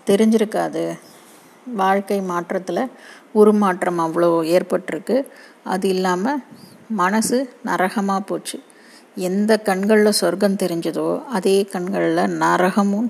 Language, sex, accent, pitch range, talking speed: Tamil, female, native, 180-220 Hz, 80 wpm